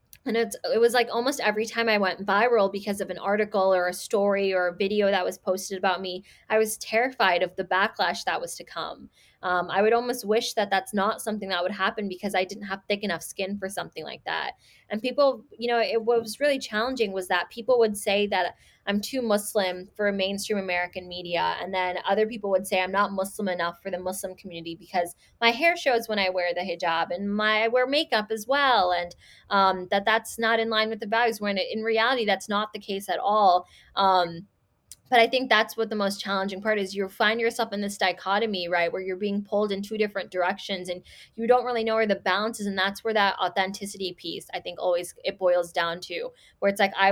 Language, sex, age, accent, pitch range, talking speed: English, female, 20-39, American, 185-220 Hz, 230 wpm